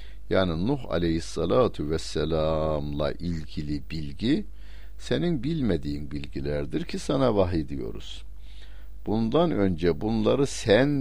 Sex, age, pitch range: male, 60-79, 75-105 Hz